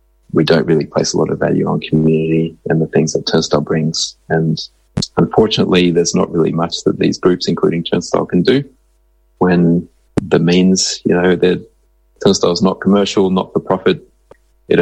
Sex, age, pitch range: male, 20-39, 85-95 Hz